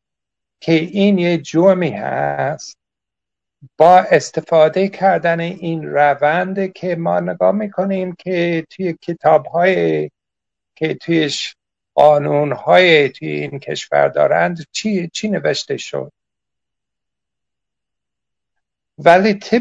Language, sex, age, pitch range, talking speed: Persian, male, 60-79, 135-180 Hz, 90 wpm